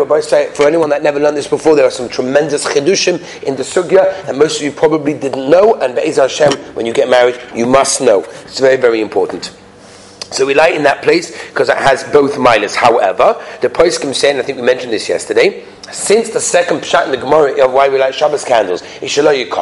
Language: English